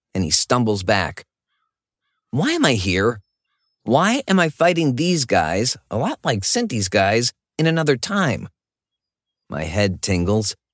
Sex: male